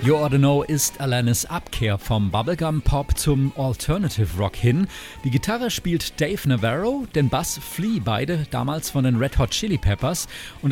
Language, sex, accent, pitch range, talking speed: German, male, German, 120-155 Hz, 175 wpm